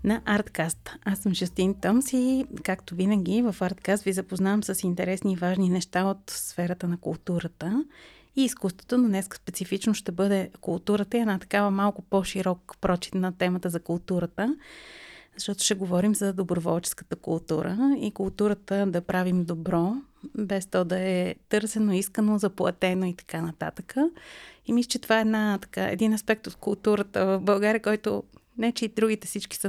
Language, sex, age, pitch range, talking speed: Bulgarian, female, 30-49, 185-220 Hz, 165 wpm